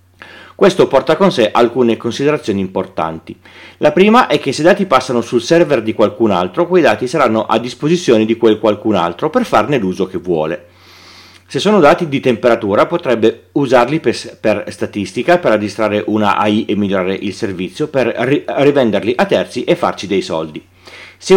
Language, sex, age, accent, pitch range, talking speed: Italian, male, 40-59, native, 100-130 Hz, 170 wpm